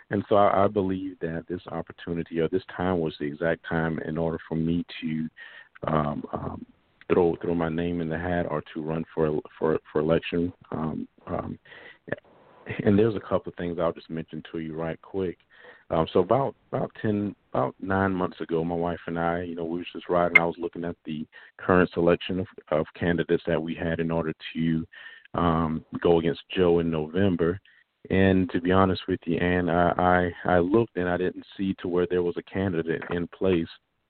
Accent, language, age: American, English, 50-69